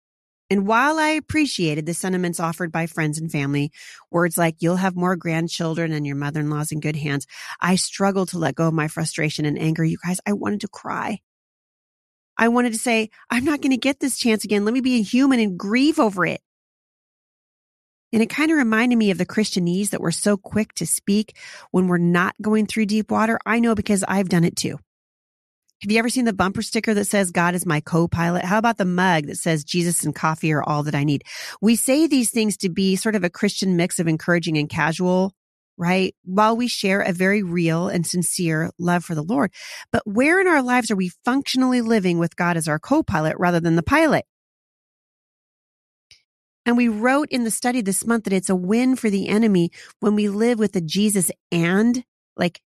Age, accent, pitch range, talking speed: 30-49, American, 170-225 Hz, 210 wpm